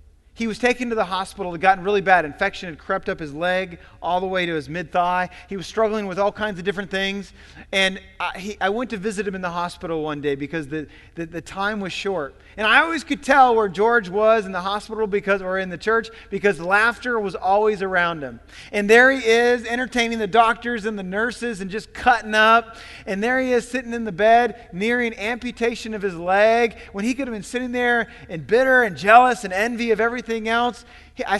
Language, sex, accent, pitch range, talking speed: English, male, American, 160-225 Hz, 225 wpm